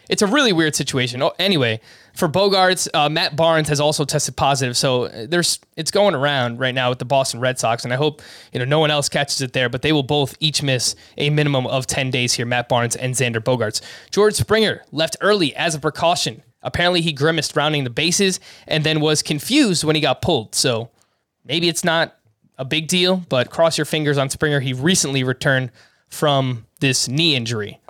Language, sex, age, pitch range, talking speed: English, male, 20-39, 130-165 Hz, 205 wpm